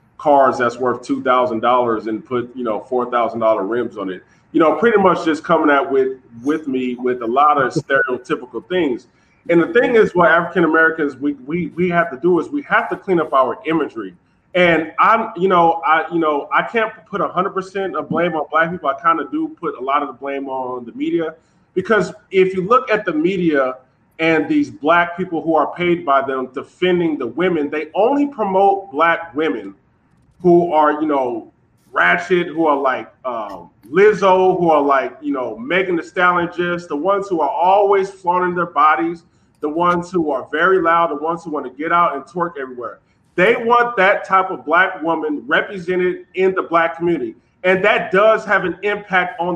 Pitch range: 150-195 Hz